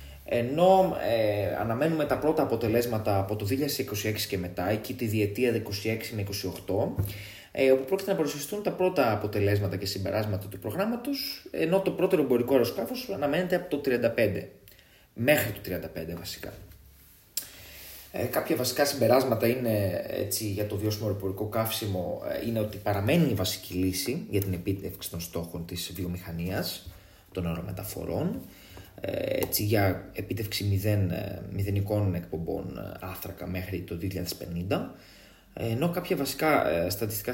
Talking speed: 130 wpm